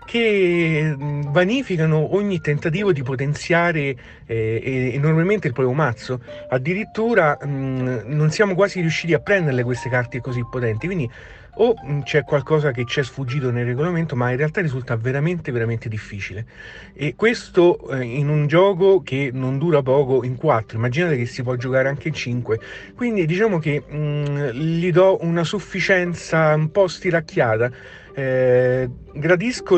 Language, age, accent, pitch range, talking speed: Italian, 40-59, native, 130-175 Hz, 150 wpm